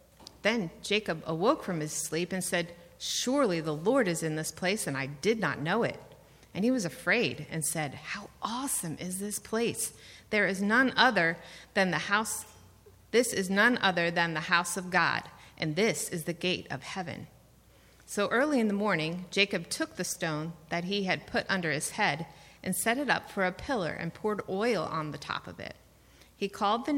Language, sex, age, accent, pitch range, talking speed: English, female, 30-49, American, 165-220 Hz, 200 wpm